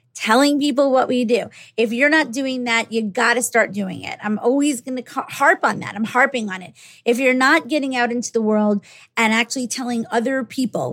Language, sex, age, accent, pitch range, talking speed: English, female, 30-49, American, 215-260 Hz, 220 wpm